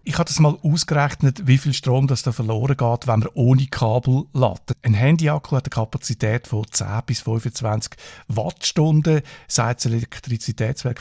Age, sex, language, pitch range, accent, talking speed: 50-69, male, German, 115-135 Hz, Austrian, 165 wpm